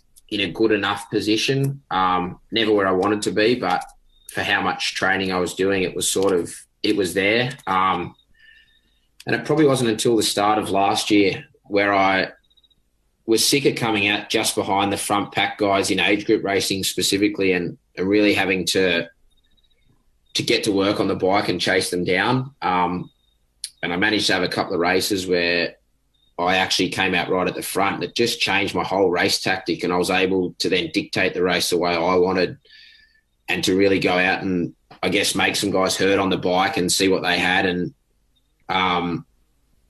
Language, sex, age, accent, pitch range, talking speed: English, male, 20-39, Australian, 90-105 Hz, 200 wpm